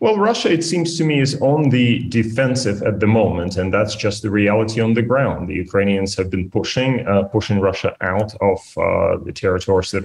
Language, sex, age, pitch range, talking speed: English, male, 30-49, 90-110 Hz, 210 wpm